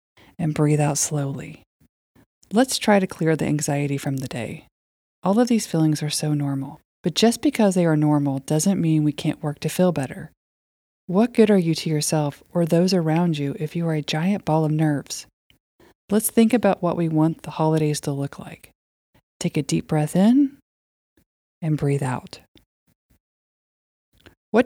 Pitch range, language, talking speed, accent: 150-190 Hz, English, 175 wpm, American